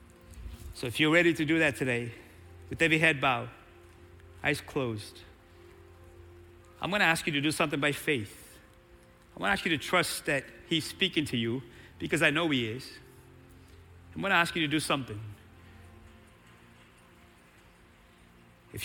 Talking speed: 160 wpm